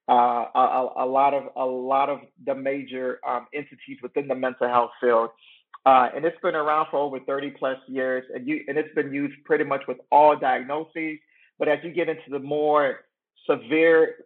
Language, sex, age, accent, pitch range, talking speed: English, male, 40-59, American, 130-150 Hz, 200 wpm